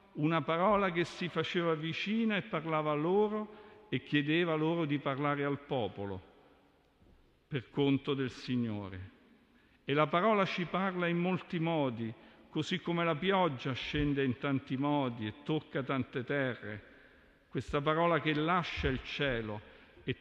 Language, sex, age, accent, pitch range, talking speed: Italian, male, 50-69, native, 125-170 Hz, 145 wpm